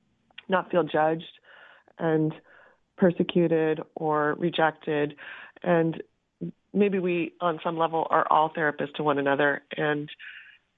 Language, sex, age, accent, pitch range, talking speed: English, female, 30-49, American, 155-180 Hz, 110 wpm